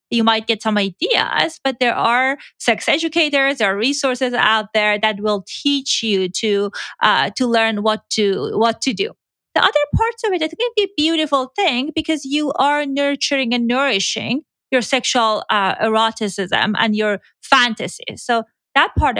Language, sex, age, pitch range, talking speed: English, female, 30-49, 215-275 Hz, 170 wpm